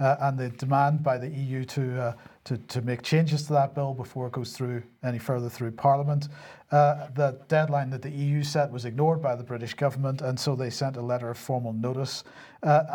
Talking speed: 220 wpm